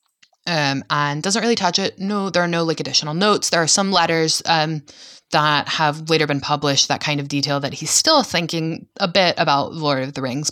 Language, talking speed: English, 215 wpm